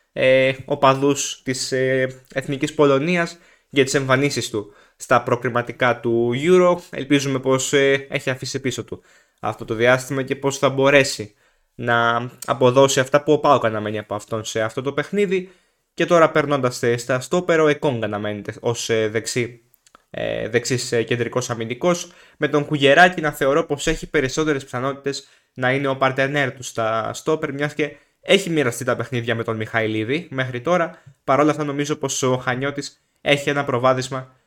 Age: 20-39